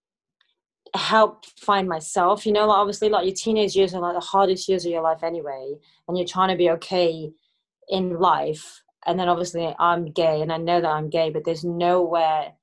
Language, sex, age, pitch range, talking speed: English, female, 30-49, 160-190 Hz, 195 wpm